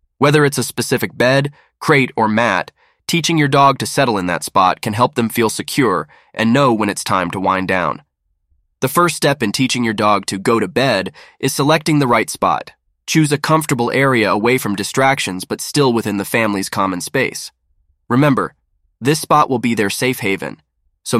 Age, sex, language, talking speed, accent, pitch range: 20-39, male, English, 190 wpm, American, 105-140 Hz